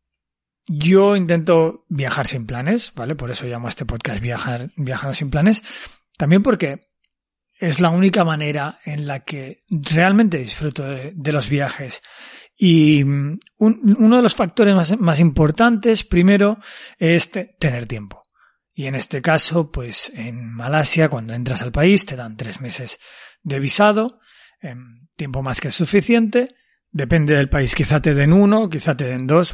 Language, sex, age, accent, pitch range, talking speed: Spanish, male, 40-59, Spanish, 130-180 Hz, 160 wpm